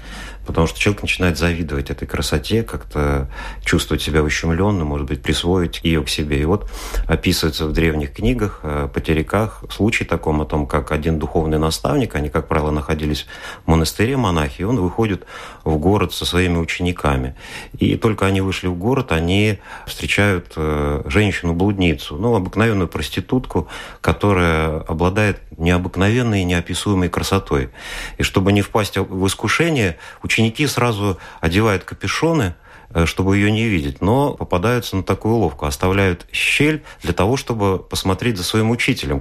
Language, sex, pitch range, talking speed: Russian, male, 80-105 Hz, 145 wpm